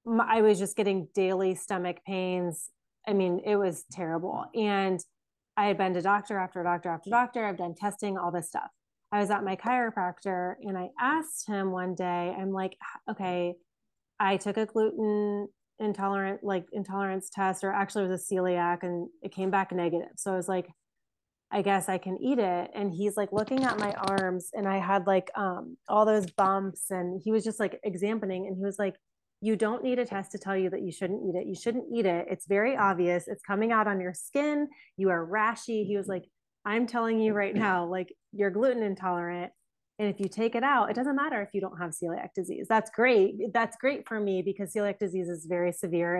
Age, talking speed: 20-39, 215 wpm